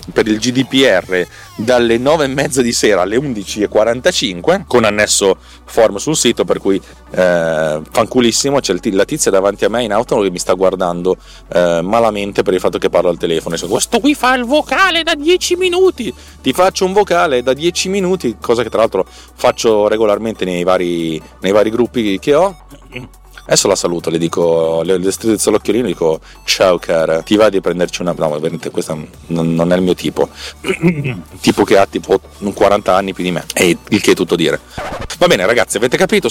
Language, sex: Italian, male